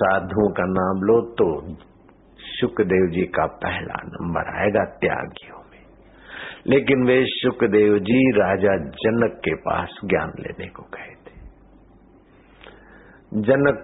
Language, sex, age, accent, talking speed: Hindi, male, 60-79, native, 115 wpm